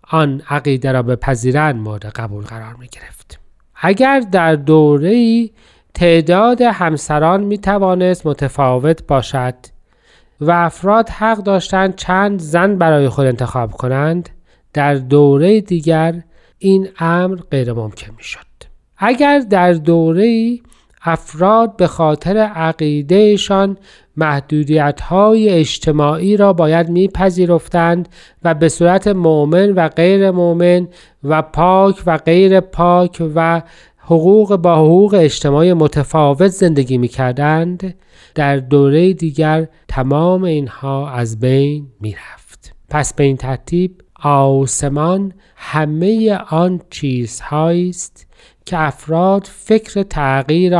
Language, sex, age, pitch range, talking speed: Persian, male, 40-59, 145-185 Hz, 110 wpm